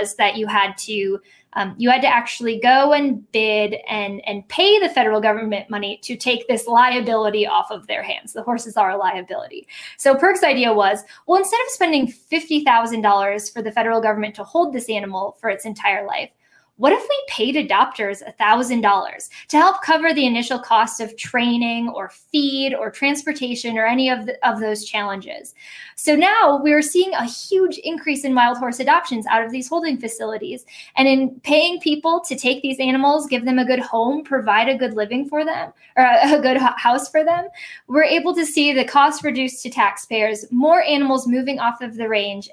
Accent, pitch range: American, 220-295 Hz